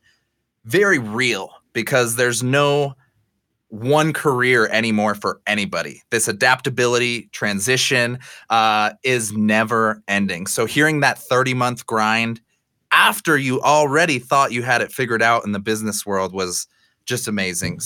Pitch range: 110-140 Hz